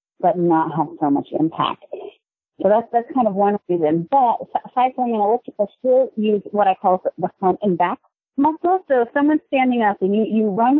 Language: English